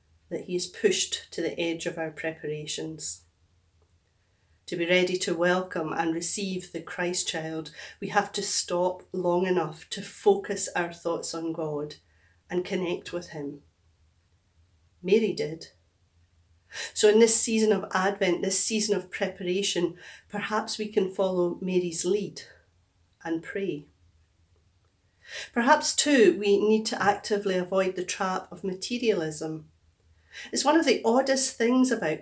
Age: 40-59